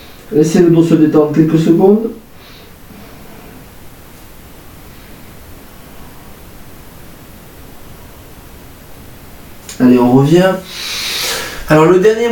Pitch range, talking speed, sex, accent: 130-175 Hz, 65 wpm, male, French